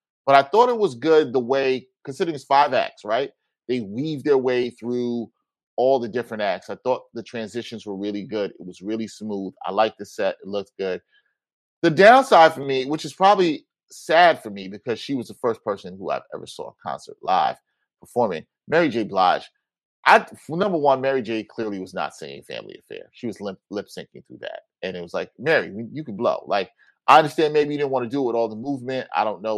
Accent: American